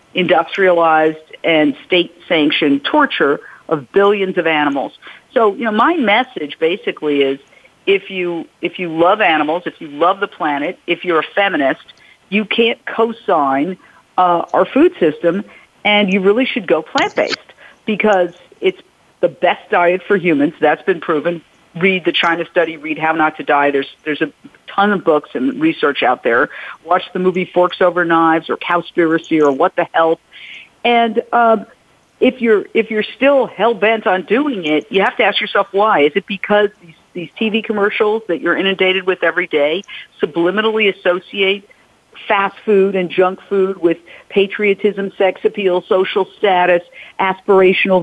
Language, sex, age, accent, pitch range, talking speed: English, female, 50-69, American, 170-215 Hz, 160 wpm